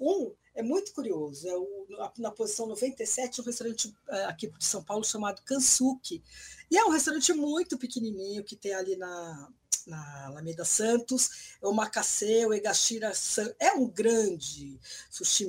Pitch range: 175-255 Hz